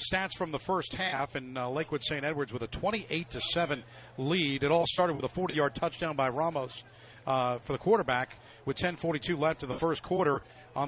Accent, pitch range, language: American, 135-175 Hz, English